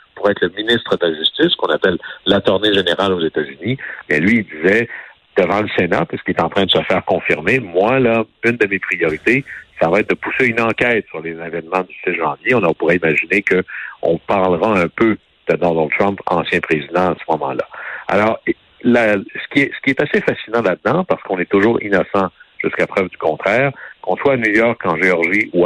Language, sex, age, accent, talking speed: French, male, 60-79, French, 215 wpm